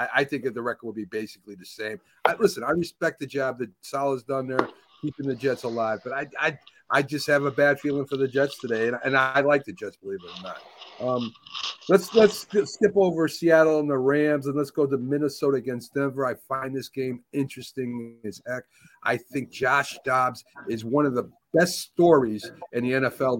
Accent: American